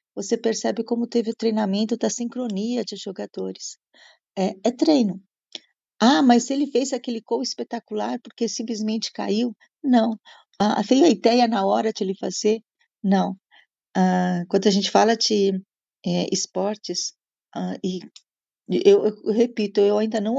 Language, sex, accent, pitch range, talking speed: Portuguese, female, Brazilian, 195-235 Hz, 150 wpm